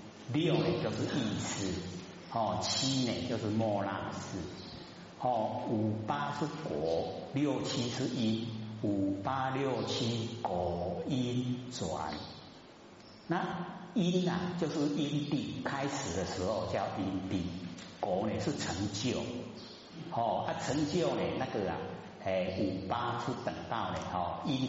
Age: 50-69